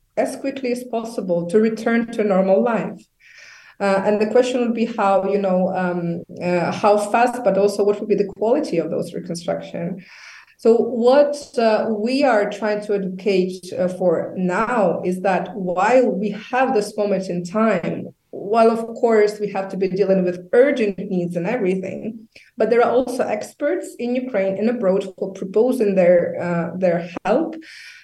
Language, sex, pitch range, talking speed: Polish, female, 190-225 Hz, 175 wpm